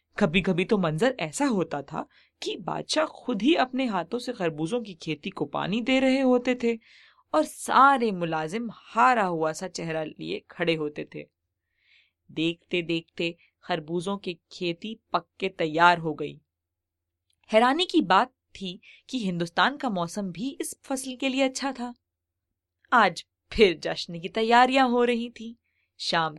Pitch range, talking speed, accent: 160-235 Hz, 150 wpm, Indian